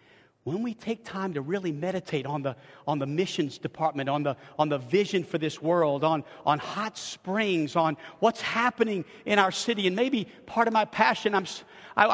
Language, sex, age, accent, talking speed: English, male, 50-69, American, 195 wpm